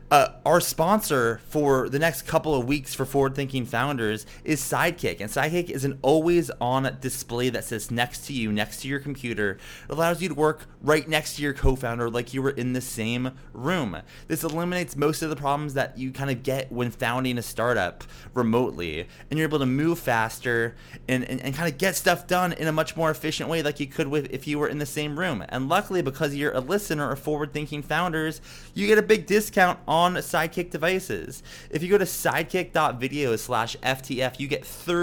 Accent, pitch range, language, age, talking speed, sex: American, 125-155 Hz, English, 30-49, 205 wpm, male